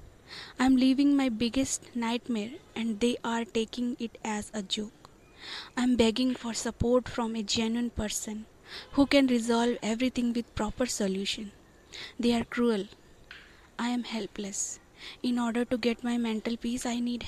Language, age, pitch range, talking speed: English, 20-39, 225-260 Hz, 155 wpm